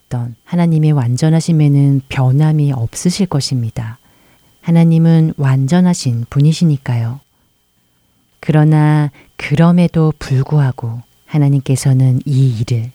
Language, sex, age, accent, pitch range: Korean, female, 40-59, native, 125-160 Hz